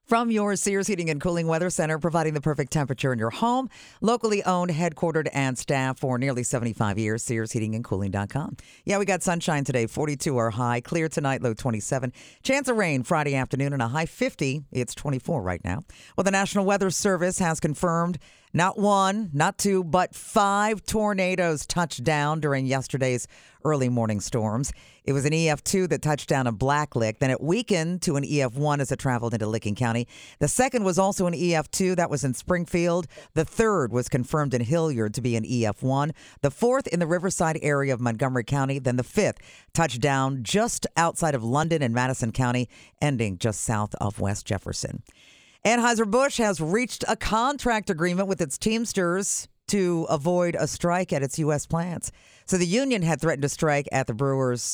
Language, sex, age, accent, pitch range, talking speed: English, female, 50-69, American, 125-180 Hz, 185 wpm